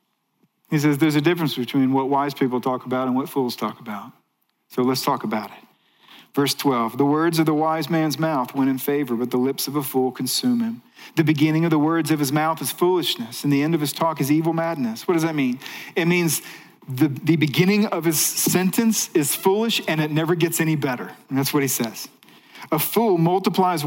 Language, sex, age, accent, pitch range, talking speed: English, male, 40-59, American, 130-160 Hz, 220 wpm